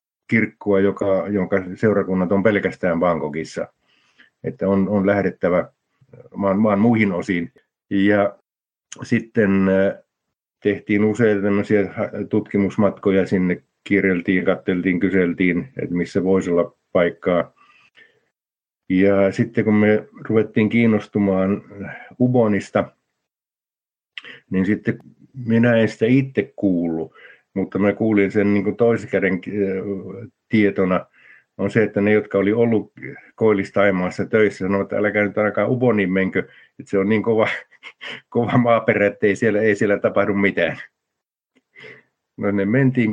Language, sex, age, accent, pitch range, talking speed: Finnish, male, 50-69, native, 95-110 Hz, 115 wpm